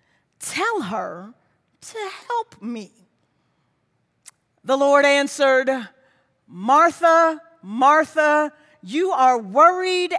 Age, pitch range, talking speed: 40-59, 215-310 Hz, 75 wpm